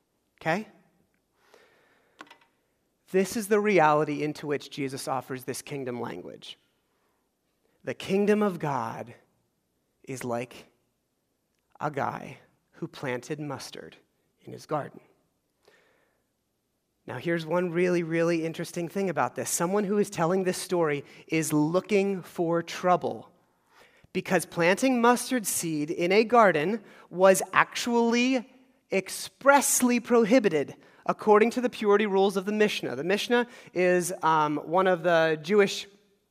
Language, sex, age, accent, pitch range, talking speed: English, male, 30-49, American, 165-205 Hz, 120 wpm